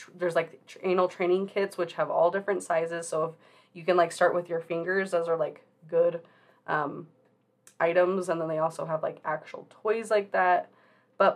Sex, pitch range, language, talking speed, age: female, 165-185 Hz, English, 190 wpm, 20-39